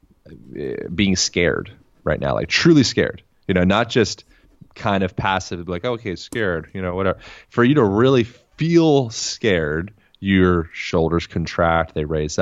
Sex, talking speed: male, 150 wpm